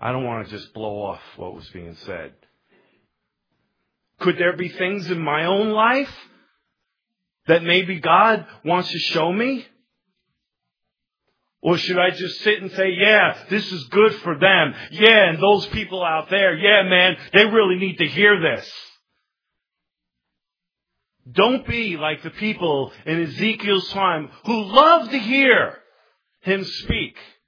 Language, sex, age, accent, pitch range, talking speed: English, male, 40-59, American, 140-205 Hz, 145 wpm